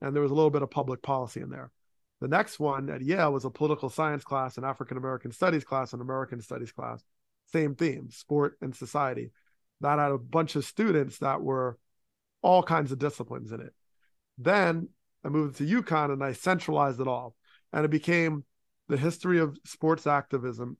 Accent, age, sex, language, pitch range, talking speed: American, 30-49, male, English, 130-155 Hz, 190 wpm